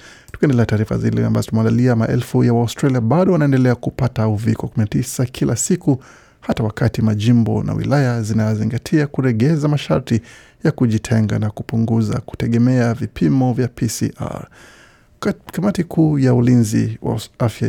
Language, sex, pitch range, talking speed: Swahili, male, 115-135 Hz, 120 wpm